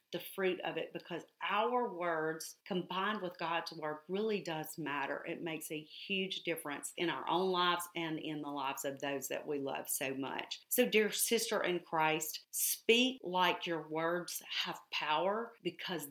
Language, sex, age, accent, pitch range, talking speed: English, female, 40-59, American, 155-185 Hz, 170 wpm